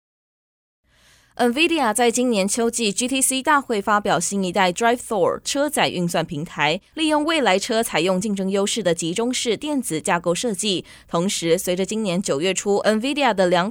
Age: 20-39